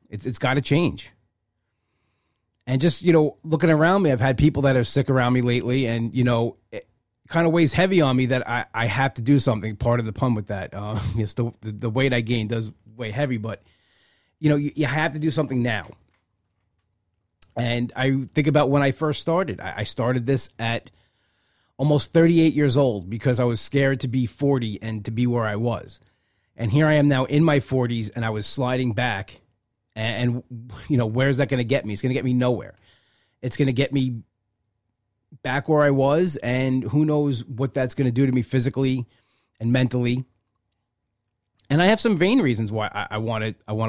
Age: 30-49